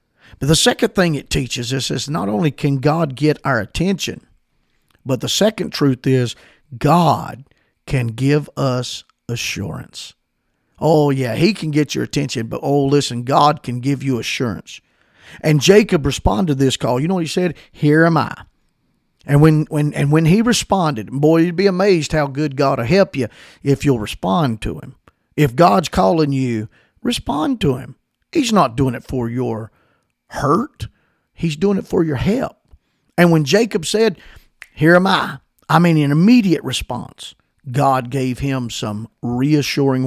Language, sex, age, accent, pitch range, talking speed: English, male, 50-69, American, 125-160 Hz, 170 wpm